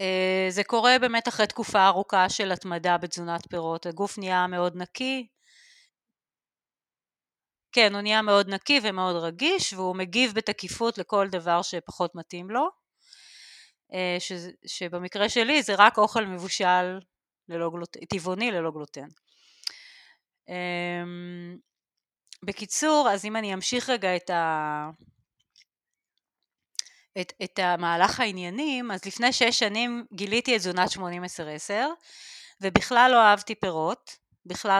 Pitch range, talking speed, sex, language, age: 180-235 Hz, 120 wpm, female, Hebrew, 30-49